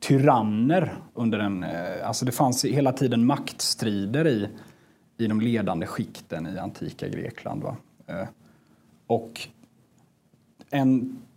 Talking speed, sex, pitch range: 105 wpm, male, 105-130 Hz